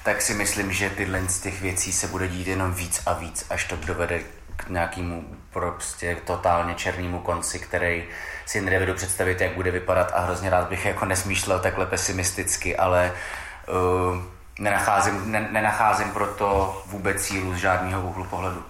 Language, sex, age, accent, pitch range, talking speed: Czech, male, 30-49, native, 90-95 Hz, 155 wpm